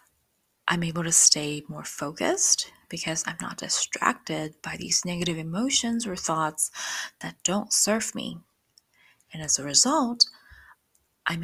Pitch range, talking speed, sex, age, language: 160-225 Hz, 130 wpm, female, 20-39, English